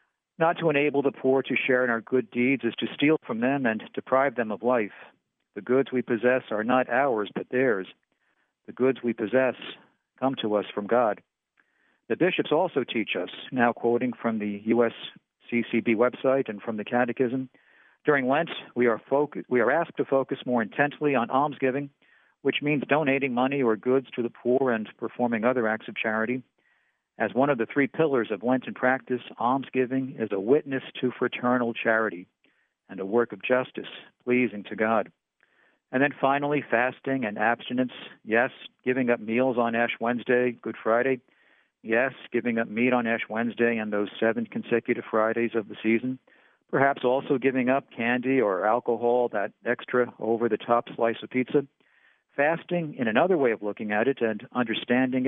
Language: English